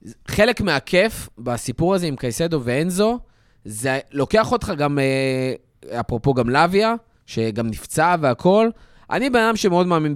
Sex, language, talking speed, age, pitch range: male, Hebrew, 130 wpm, 20-39, 145-205 Hz